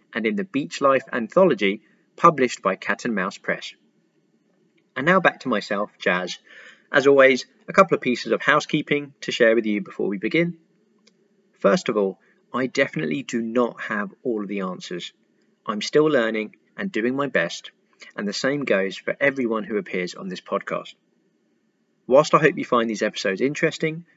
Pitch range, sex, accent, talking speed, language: 110-150 Hz, male, British, 175 wpm, English